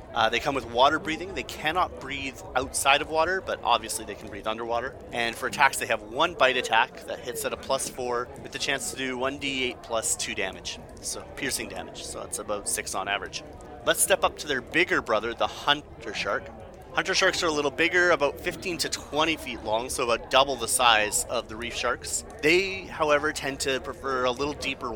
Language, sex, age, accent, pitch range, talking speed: English, male, 30-49, American, 115-145 Hz, 215 wpm